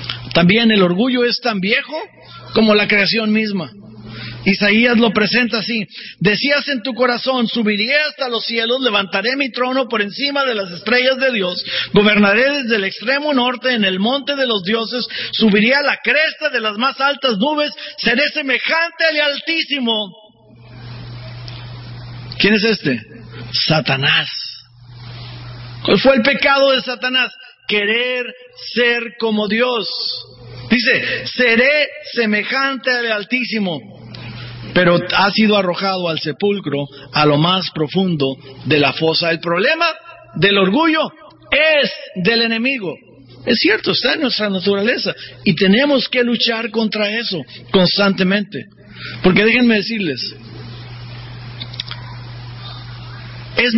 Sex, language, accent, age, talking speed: male, English, Mexican, 50-69, 125 wpm